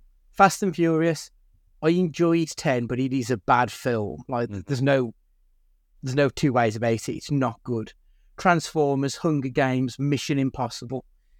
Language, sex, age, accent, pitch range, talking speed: English, male, 30-49, British, 115-145 Hz, 155 wpm